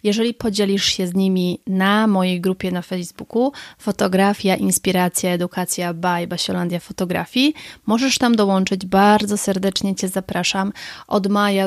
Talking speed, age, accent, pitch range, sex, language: 130 wpm, 20-39, native, 185-210 Hz, female, Polish